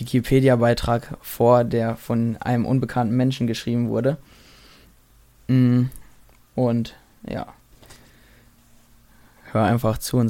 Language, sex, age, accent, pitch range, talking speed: German, male, 20-39, German, 115-130 Hz, 85 wpm